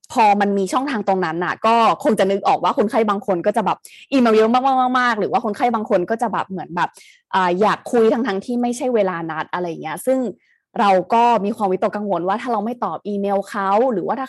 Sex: female